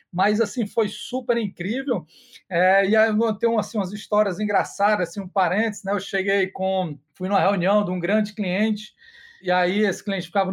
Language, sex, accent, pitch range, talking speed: Portuguese, male, Brazilian, 200-255 Hz, 195 wpm